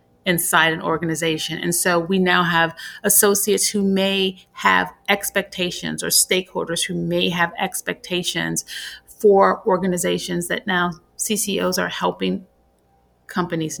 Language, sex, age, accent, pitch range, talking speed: English, female, 30-49, American, 170-195 Hz, 115 wpm